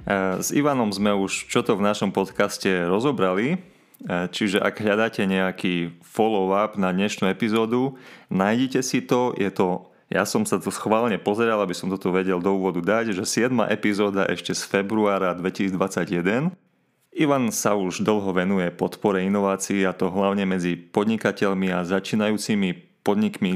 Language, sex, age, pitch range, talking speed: Slovak, male, 30-49, 90-110 Hz, 150 wpm